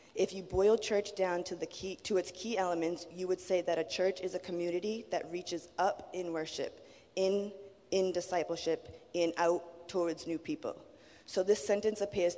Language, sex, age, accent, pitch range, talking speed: English, female, 20-39, American, 170-190 Hz, 185 wpm